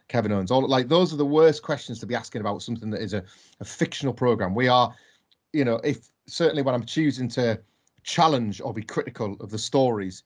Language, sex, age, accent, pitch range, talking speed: English, male, 30-49, British, 115-145 Hz, 215 wpm